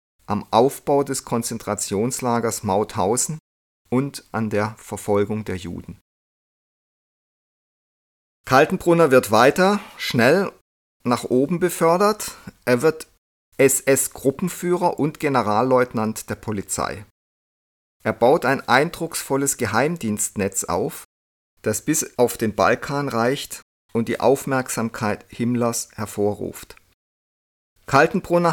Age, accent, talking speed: 50-69, German, 90 wpm